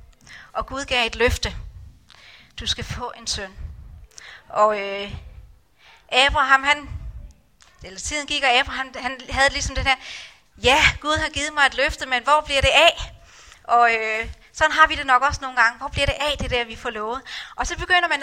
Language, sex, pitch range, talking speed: Danish, female, 235-290 Hz, 195 wpm